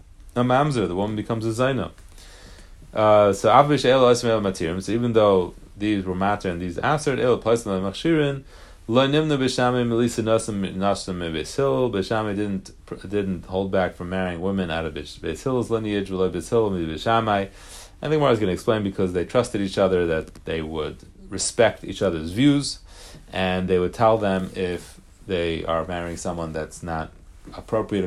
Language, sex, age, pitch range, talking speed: English, male, 30-49, 90-115 Hz, 155 wpm